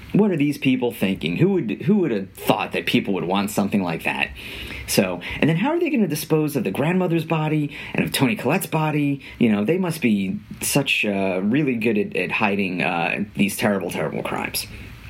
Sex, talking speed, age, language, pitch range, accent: male, 210 wpm, 30-49, English, 105-155 Hz, American